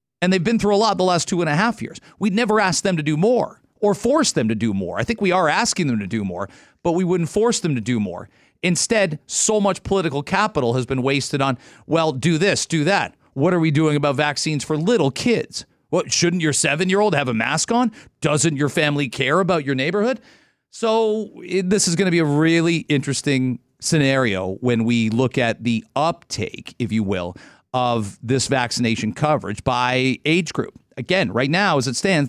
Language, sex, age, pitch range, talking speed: English, male, 40-59, 125-175 Hz, 210 wpm